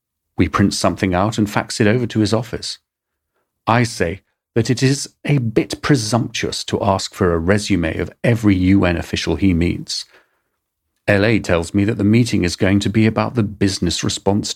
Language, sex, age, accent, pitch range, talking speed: English, male, 40-59, British, 90-115 Hz, 180 wpm